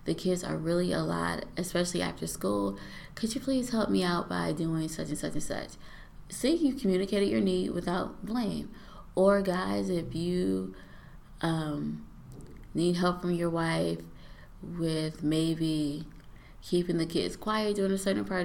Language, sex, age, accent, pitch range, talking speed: English, female, 20-39, American, 155-190 Hz, 160 wpm